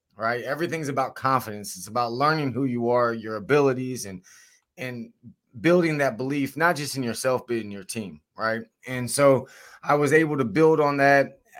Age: 20-39